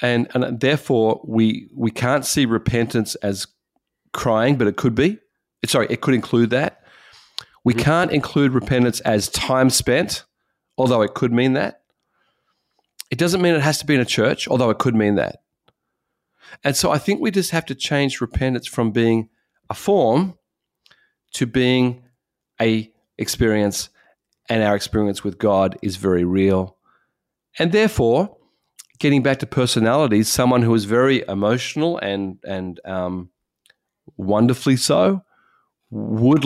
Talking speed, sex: 145 wpm, male